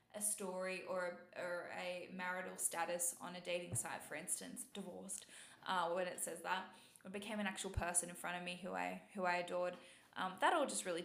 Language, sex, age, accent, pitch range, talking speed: English, female, 10-29, Australian, 175-200 Hz, 210 wpm